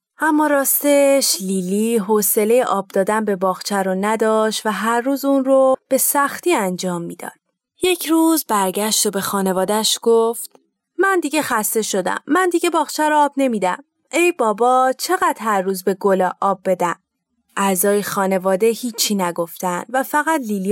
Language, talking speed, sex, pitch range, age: Persian, 155 wpm, female, 195-265 Hz, 30-49